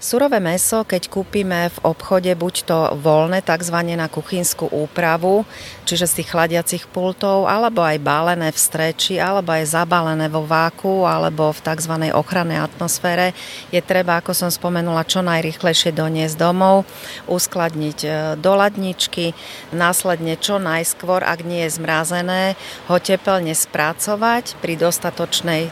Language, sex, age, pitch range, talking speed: Slovak, female, 40-59, 155-180 Hz, 135 wpm